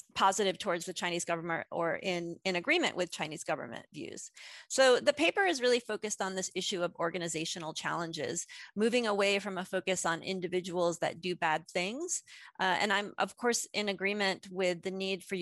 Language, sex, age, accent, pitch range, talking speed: English, female, 30-49, American, 175-205 Hz, 185 wpm